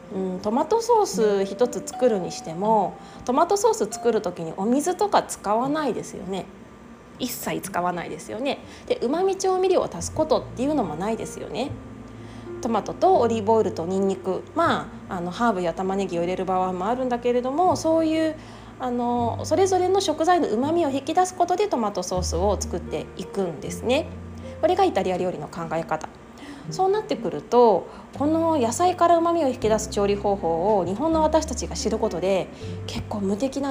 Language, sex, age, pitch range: Japanese, female, 20-39, 190-320 Hz